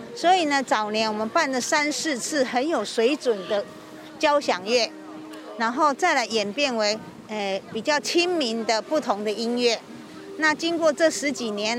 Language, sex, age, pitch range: Chinese, female, 50-69, 215-295 Hz